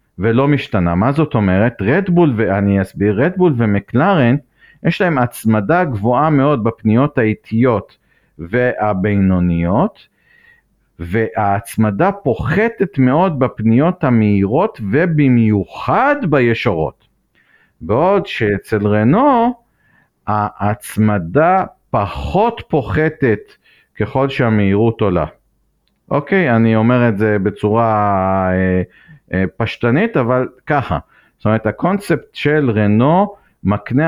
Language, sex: Hebrew, male